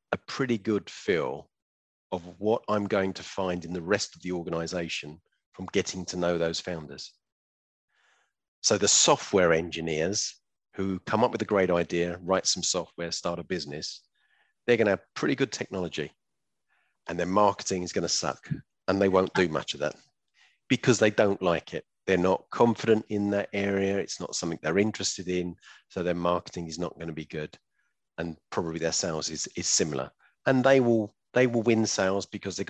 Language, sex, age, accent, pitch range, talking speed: English, male, 40-59, British, 85-105 Hz, 185 wpm